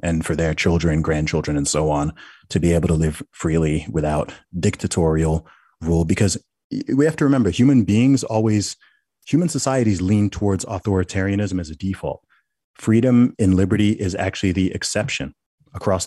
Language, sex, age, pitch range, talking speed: English, male, 30-49, 90-105 Hz, 155 wpm